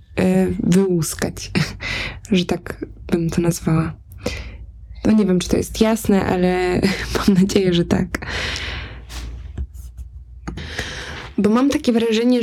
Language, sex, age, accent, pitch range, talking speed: Polish, female, 20-39, native, 185-215 Hz, 105 wpm